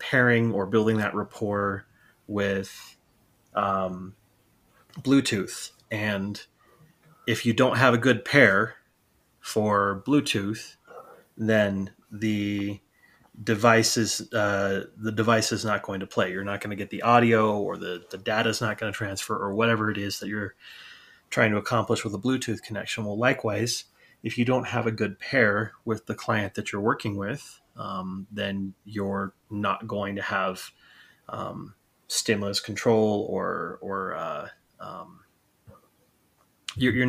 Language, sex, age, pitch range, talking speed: English, male, 30-49, 100-115 Hz, 145 wpm